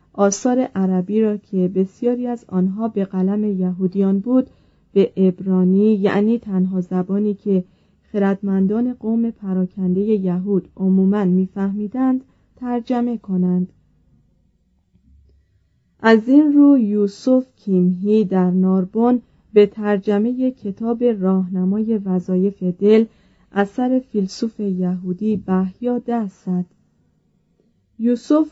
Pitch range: 190-235 Hz